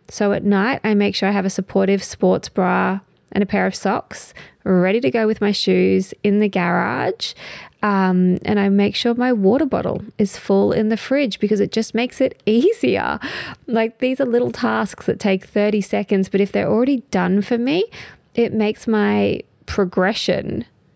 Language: English